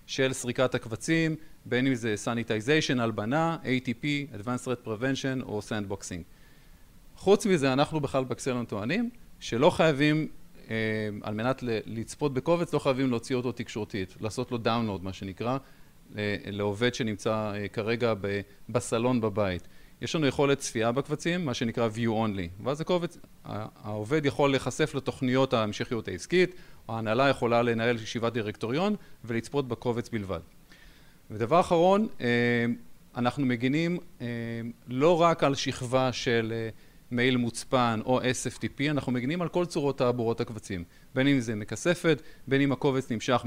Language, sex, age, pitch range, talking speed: Hebrew, male, 40-59, 115-145 Hz, 130 wpm